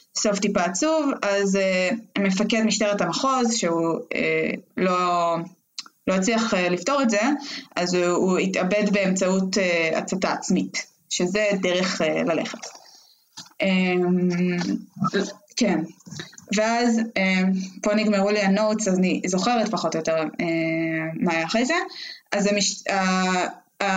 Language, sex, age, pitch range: Hebrew, female, 20-39, 185-235 Hz